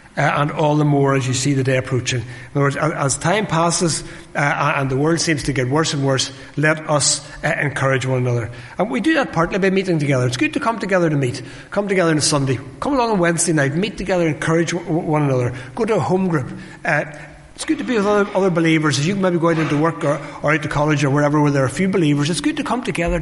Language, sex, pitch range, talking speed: English, male, 145-180 Hz, 260 wpm